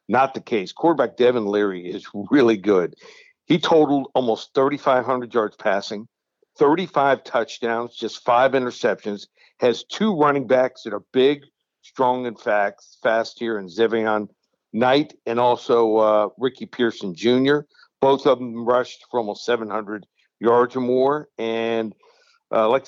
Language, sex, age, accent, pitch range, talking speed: English, male, 60-79, American, 110-135 Hz, 140 wpm